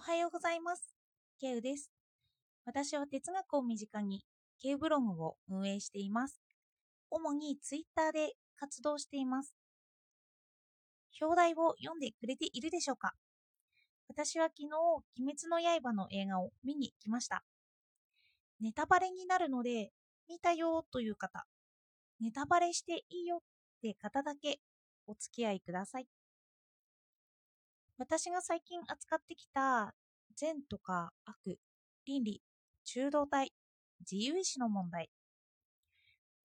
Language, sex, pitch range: Japanese, female, 225-320 Hz